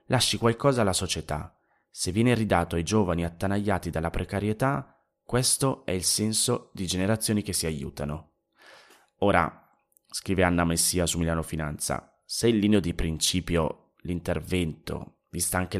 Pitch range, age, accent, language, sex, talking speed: 85-105 Hz, 30-49, native, Italian, male, 135 wpm